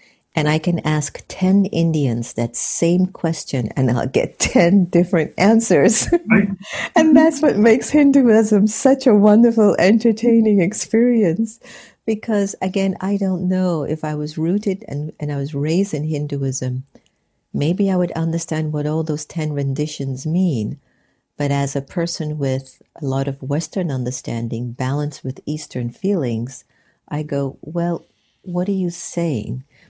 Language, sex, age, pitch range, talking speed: English, female, 50-69, 140-195 Hz, 145 wpm